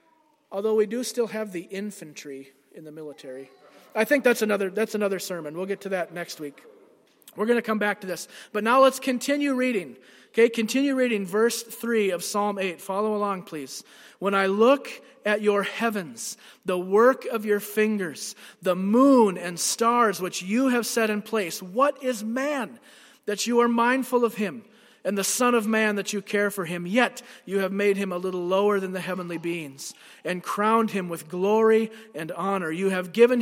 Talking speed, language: 195 wpm, English